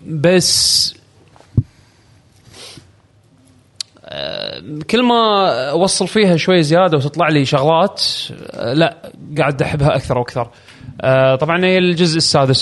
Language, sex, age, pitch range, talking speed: Arabic, male, 30-49, 125-170 Hz, 90 wpm